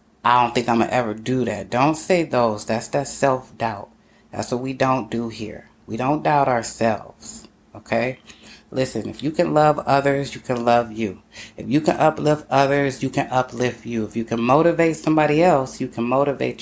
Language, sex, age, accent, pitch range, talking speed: English, female, 30-49, American, 120-145 Hz, 195 wpm